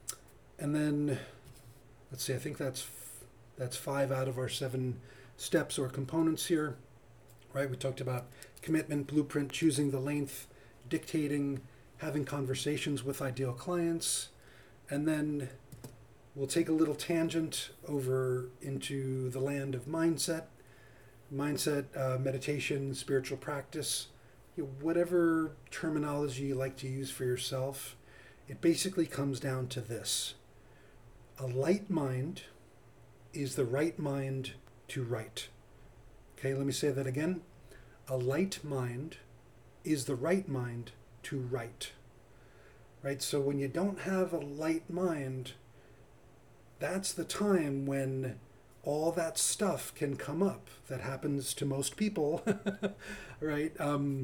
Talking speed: 130 wpm